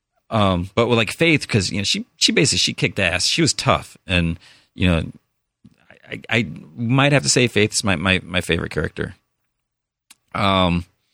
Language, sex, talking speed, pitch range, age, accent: English, male, 185 wpm, 90-115 Hz, 30-49, American